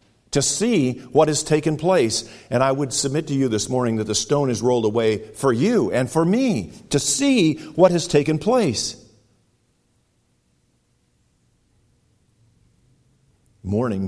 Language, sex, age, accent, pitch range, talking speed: English, male, 50-69, American, 95-135 Hz, 135 wpm